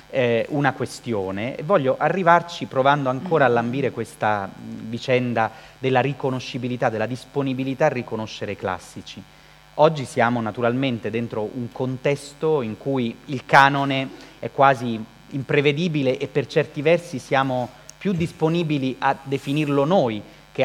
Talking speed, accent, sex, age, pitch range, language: 125 wpm, native, male, 30-49, 115-145 Hz, Italian